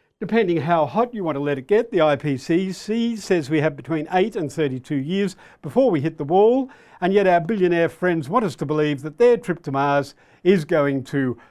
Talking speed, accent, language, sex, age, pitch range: 215 wpm, Australian, English, male, 50-69, 145-190 Hz